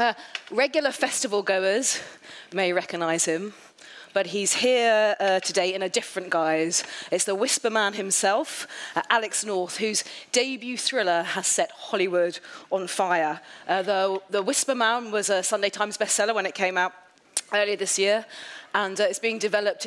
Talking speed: 165 wpm